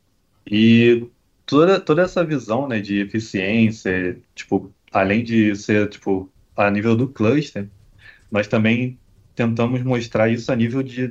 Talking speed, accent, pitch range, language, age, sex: 135 wpm, Brazilian, 100-115 Hz, Portuguese, 20-39, male